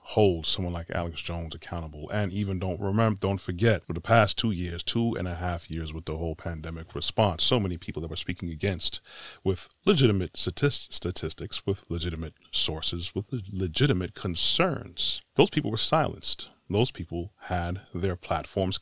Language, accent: English, American